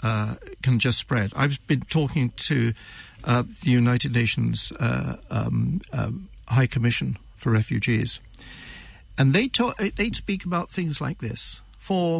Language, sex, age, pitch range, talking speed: English, male, 60-79, 120-160 Hz, 145 wpm